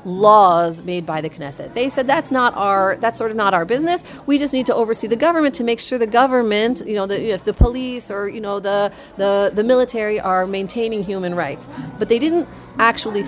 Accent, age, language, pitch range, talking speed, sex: American, 40-59, English, 185-260 Hz, 245 wpm, female